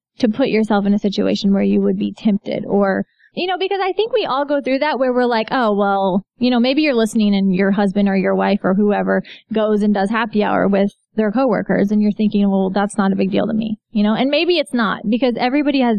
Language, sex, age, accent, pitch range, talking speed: English, female, 20-39, American, 200-245 Hz, 255 wpm